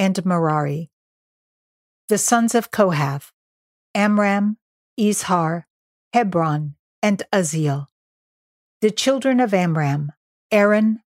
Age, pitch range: 50-69, 160-205 Hz